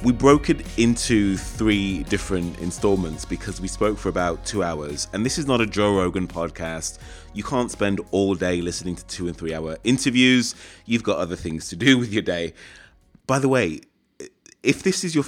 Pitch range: 85-110 Hz